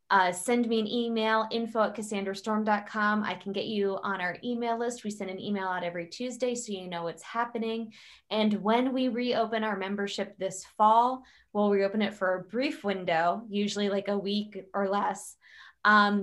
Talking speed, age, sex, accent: 185 wpm, 20-39, female, American